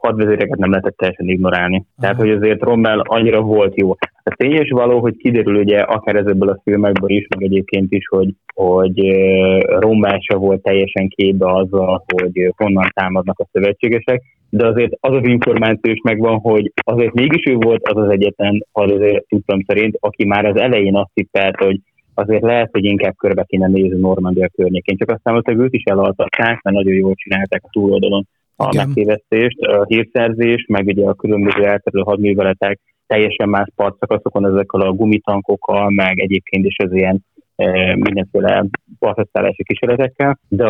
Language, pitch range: Hungarian, 95-110 Hz